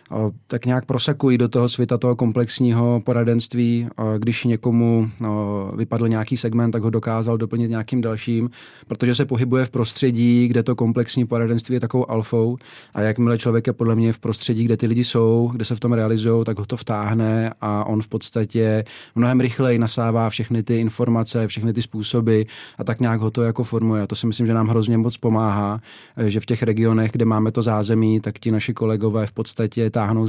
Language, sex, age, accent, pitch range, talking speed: Czech, male, 30-49, native, 110-120 Hz, 195 wpm